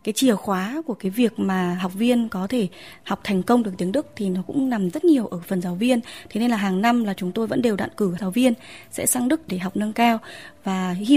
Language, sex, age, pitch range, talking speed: Vietnamese, female, 20-39, 190-240 Hz, 270 wpm